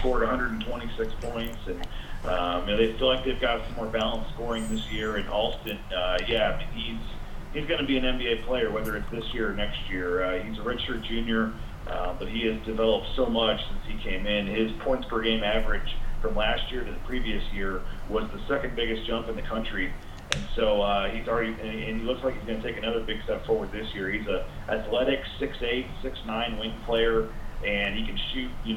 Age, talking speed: 40-59, 220 wpm